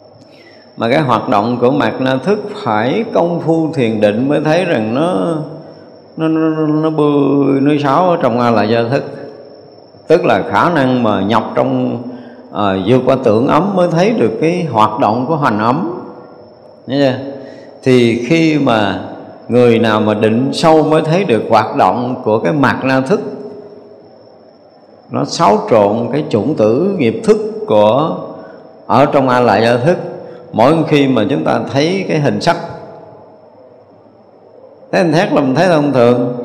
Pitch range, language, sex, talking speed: 115-165 Hz, Vietnamese, male, 160 wpm